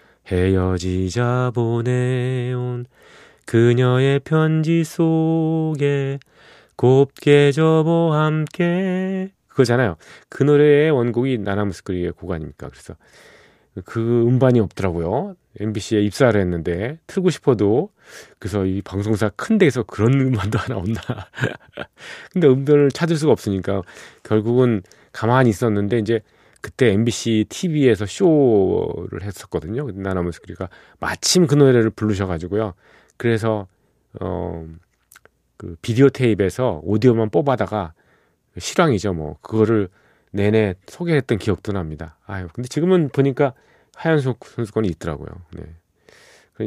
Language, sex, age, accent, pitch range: Korean, male, 30-49, native, 100-140 Hz